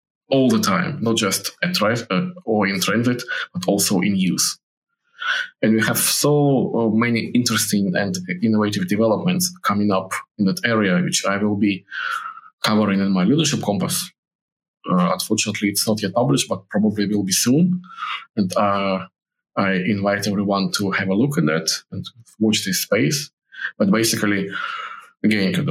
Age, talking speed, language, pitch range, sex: 20-39, 160 wpm, English, 100-165 Hz, male